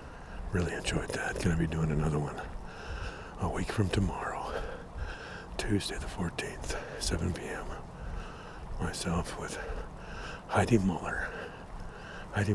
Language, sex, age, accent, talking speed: English, male, 60-79, American, 110 wpm